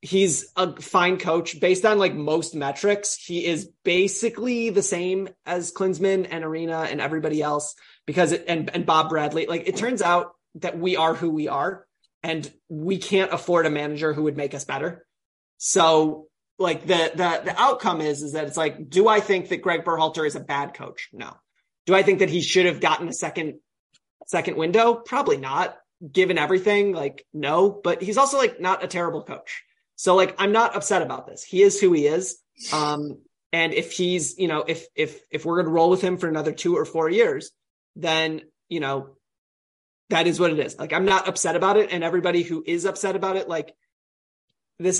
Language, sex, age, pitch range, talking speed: English, male, 30-49, 155-190 Hz, 205 wpm